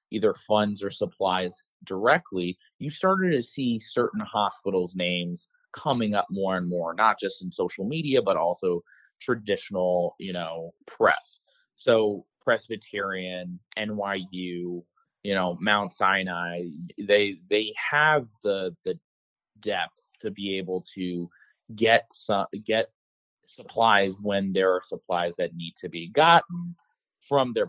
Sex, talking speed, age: male, 130 wpm, 30-49